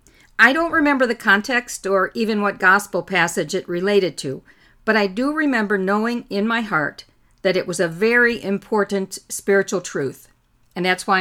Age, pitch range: 50-69, 165-220 Hz